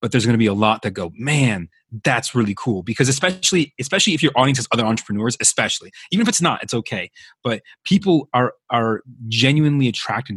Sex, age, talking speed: male, 30-49, 205 wpm